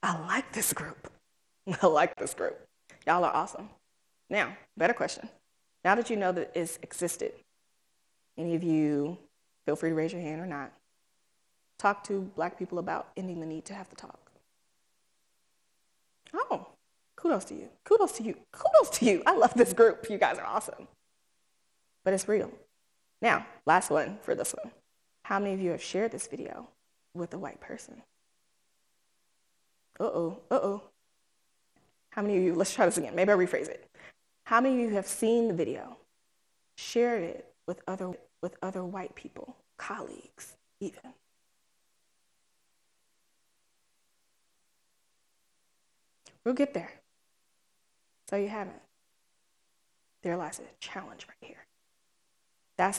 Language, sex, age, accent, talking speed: English, female, 20-39, American, 145 wpm